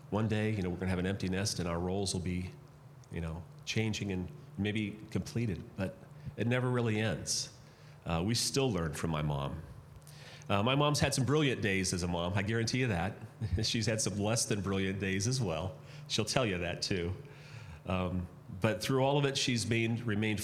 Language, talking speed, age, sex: English, 205 wpm, 40-59, male